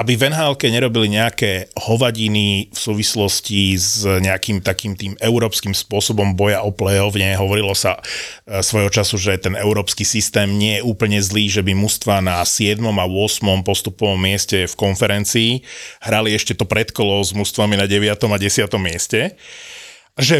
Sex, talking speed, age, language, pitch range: male, 150 wpm, 30-49, Slovak, 100-125 Hz